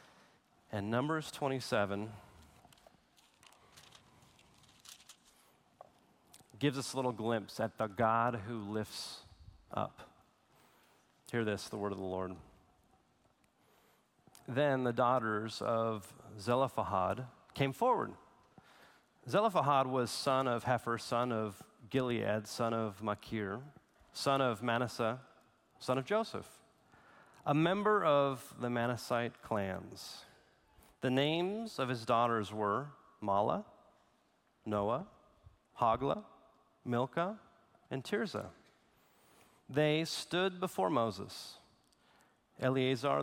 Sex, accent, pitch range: male, American, 110-135 Hz